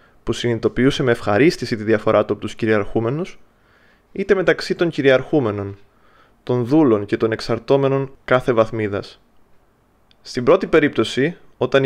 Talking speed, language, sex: 125 wpm, Greek, male